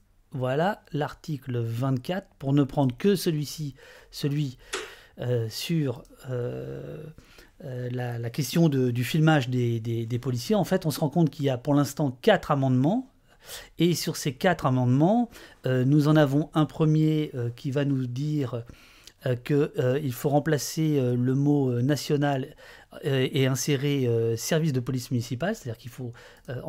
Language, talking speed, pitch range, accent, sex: French, 155 wpm, 125-155 Hz, French, male